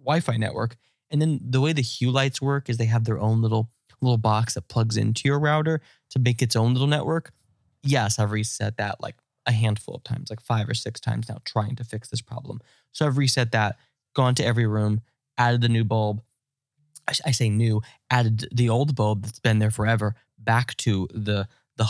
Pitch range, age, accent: 110-130 Hz, 20-39, American